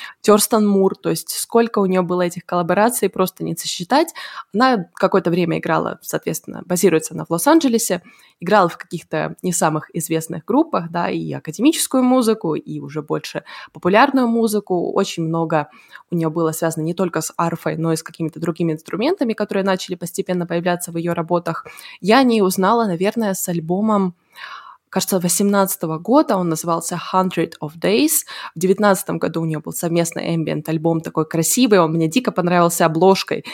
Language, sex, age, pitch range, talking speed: Russian, female, 20-39, 165-205 Hz, 160 wpm